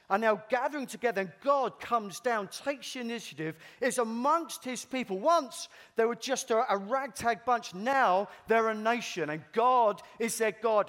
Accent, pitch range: British, 155-245 Hz